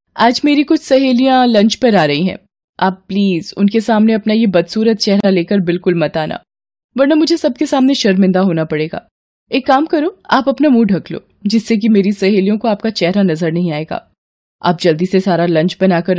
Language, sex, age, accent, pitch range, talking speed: Hindi, female, 20-39, native, 170-235 Hz, 195 wpm